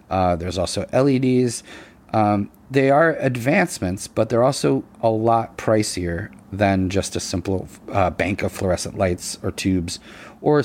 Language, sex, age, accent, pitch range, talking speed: English, male, 30-49, American, 95-110 Hz, 145 wpm